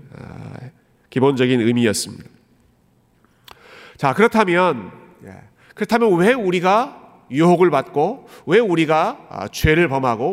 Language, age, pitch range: Korean, 40-59, 115-160 Hz